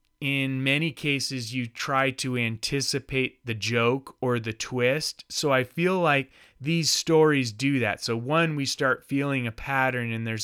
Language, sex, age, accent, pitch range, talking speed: English, male, 30-49, American, 115-150 Hz, 165 wpm